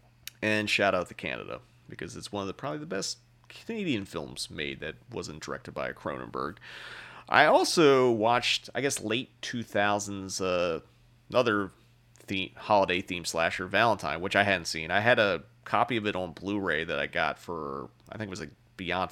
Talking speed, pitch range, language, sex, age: 180 wpm, 95-120 Hz, English, male, 30-49